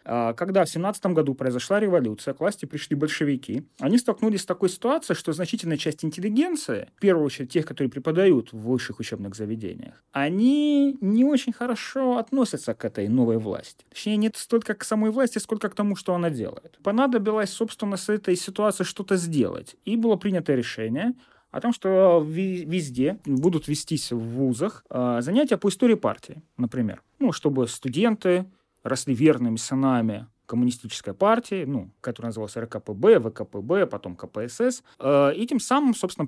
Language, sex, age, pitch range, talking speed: Russian, male, 30-49, 135-215 Hz, 155 wpm